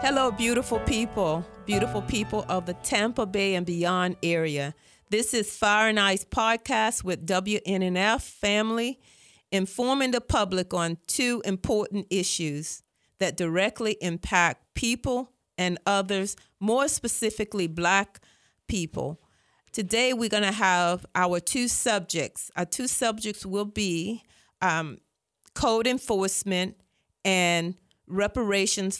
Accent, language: American, English